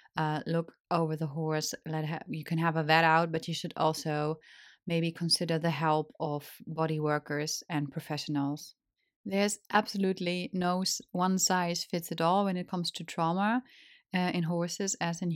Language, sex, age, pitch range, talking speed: English, female, 30-49, 160-180 Hz, 155 wpm